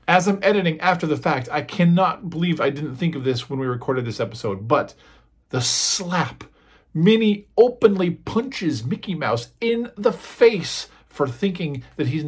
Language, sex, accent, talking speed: English, male, American, 165 wpm